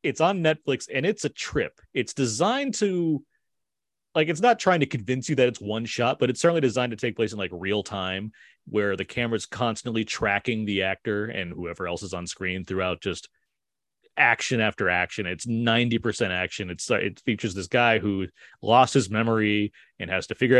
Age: 30-49